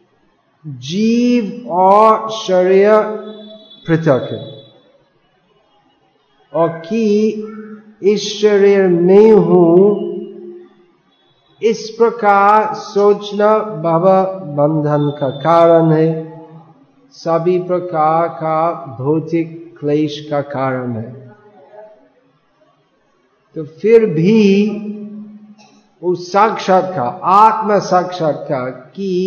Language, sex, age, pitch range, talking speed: Hindi, male, 50-69, 165-200 Hz, 70 wpm